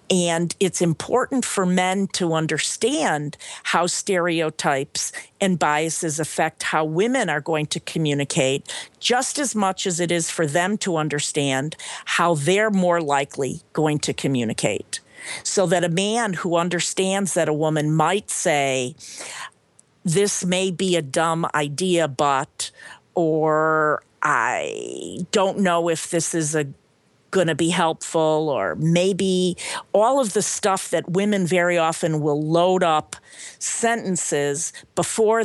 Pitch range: 155-190 Hz